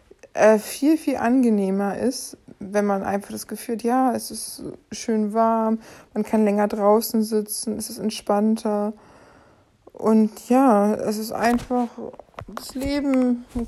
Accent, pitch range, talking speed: German, 210-240 Hz, 135 wpm